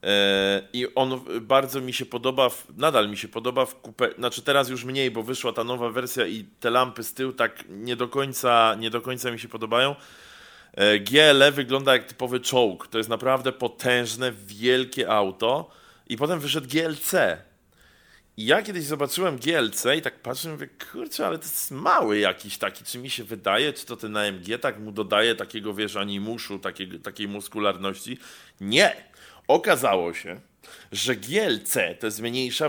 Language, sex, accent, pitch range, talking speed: Polish, male, native, 105-130 Hz, 175 wpm